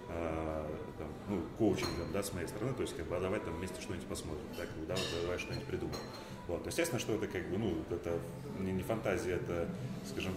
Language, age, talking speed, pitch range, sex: Russian, 30-49, 195 wpm, 85-105 Hz, male